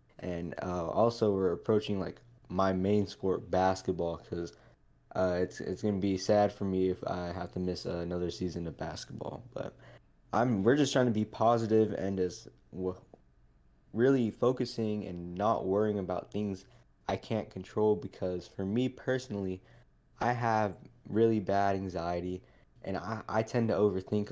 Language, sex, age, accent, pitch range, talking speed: English, male, 20-39, American, 90-110 Hz, 160 wpm